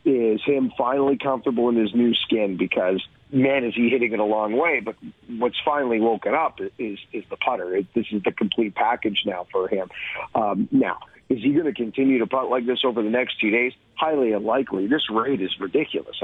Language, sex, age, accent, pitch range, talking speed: English, male, 50-69, American, 110-140 Hz, 215 wpm